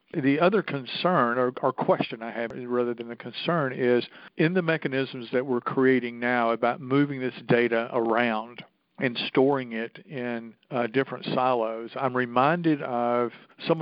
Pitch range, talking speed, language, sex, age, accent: 120-135 Hz, 150 wpm, English, male, 50-69, American